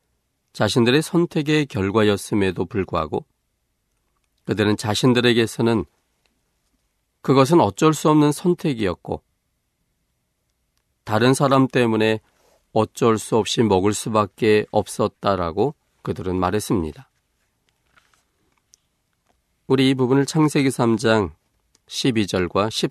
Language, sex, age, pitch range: Korean, male, 40-59, 90-125 Hz